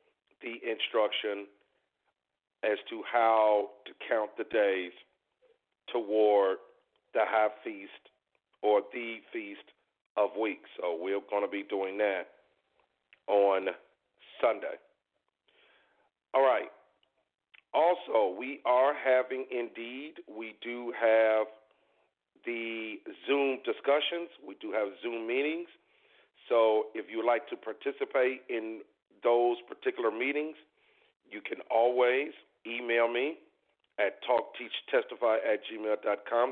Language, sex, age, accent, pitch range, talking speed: English, male, 50-69, American, 110-170 Hz, 105 wpm